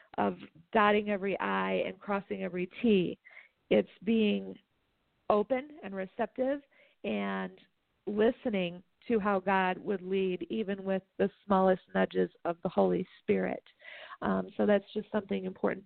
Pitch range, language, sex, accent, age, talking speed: 185-230 Hz, English, female, American, 40-59, 130 wpm